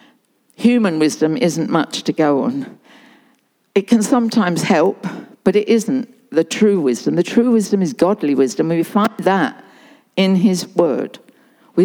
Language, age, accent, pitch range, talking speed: English, 60-79, British, 195-255 Hz, 150 wpm